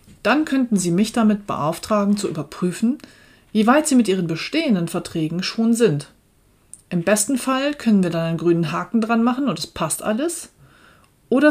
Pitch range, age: 160-215 Hz, 40-59